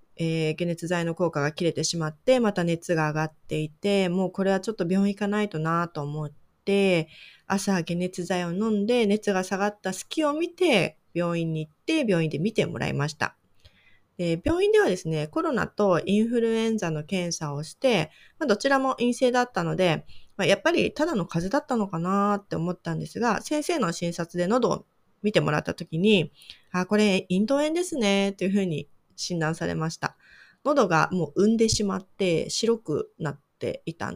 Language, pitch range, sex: Japanese, 160-215 Hz, female